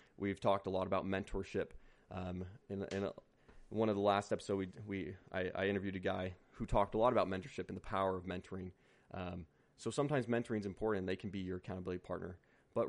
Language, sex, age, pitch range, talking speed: English, male, 30-49, 95-130 Hz, 215 wpm